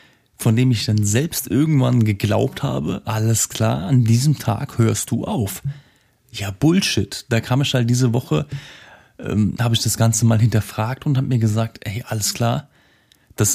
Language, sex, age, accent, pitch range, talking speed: German, male, 30-49, German, 110-130 Hz, 175 wpm